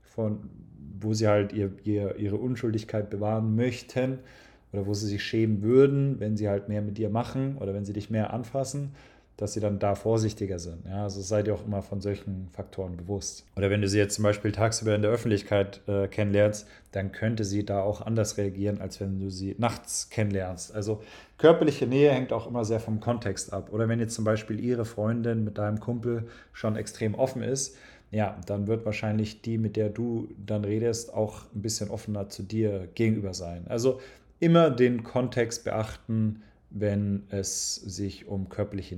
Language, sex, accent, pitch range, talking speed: German, male, German, 100-115 Hz, 185 wpm